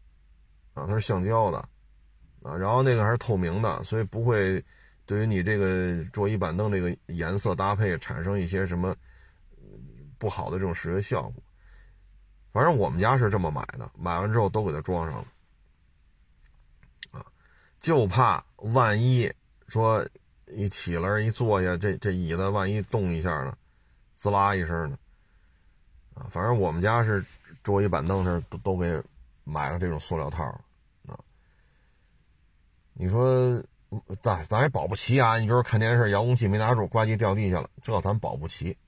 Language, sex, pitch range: Chinese, male, 90-115 Hz